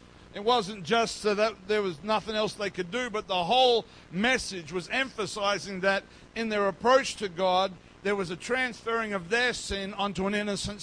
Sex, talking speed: male, 185 wpm